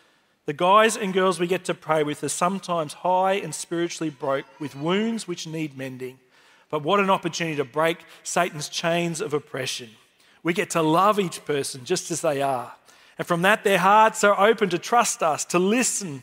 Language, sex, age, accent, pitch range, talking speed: English, male, 40-59, Australian, 150-200 Hz, 190 wpm